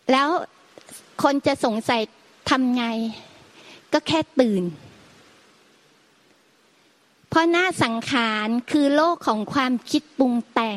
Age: 30-49